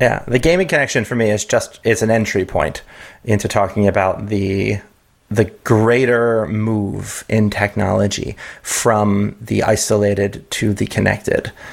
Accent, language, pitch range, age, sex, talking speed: American, English, 100-115 Hz, 30-49, male, 140 wpm